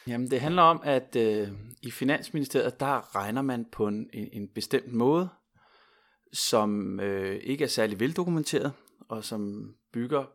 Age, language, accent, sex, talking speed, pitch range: 30-49, Danish, native, male, 145 wpm, 105-135 Hz